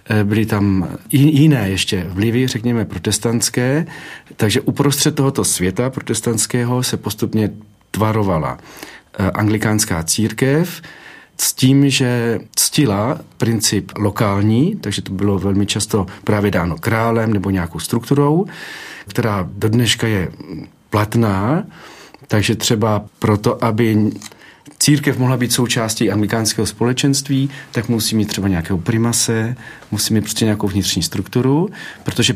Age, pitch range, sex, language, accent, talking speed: 40-59, 105-130 Hz, male, Czech, native, 115 wpm